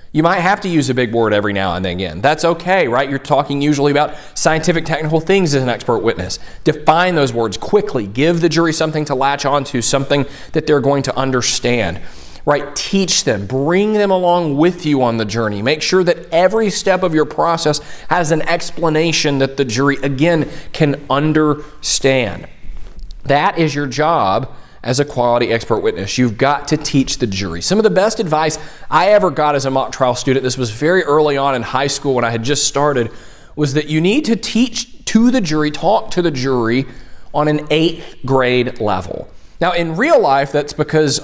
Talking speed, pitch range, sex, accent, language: 200 wpm, 130-170 Hz, male, American, English